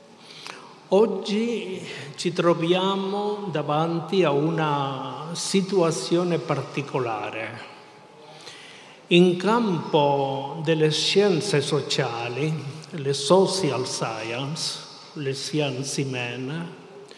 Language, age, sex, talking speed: Italian, 60-79, male, 65 wpm